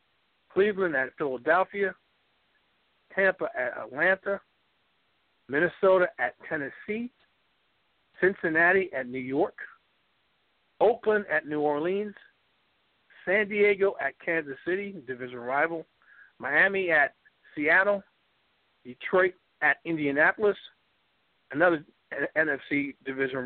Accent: American